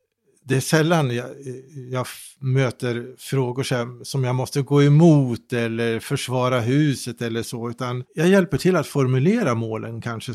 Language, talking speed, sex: English, 145 wpm, male